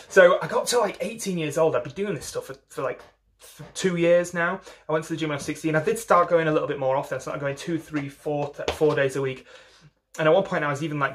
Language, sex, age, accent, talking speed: English, male, 30-49, British, 300 wpm